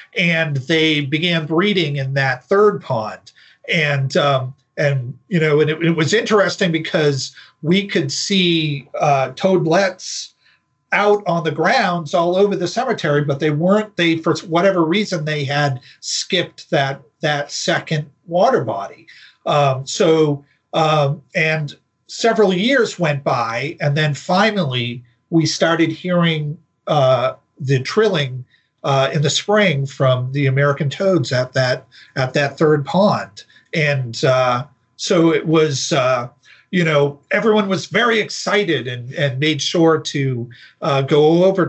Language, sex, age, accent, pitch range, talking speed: English, male, 40-59, American, 135-170 Hz, 140 wpm